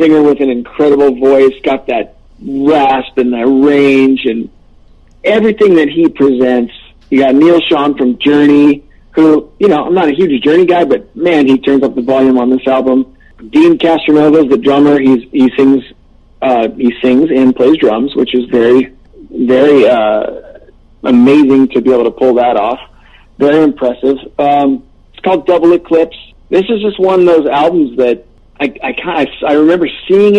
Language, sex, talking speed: English, male, 175 wpm